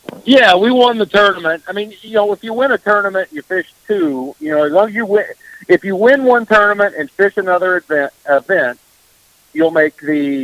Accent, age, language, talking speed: American, 50-69, English, 200 wpm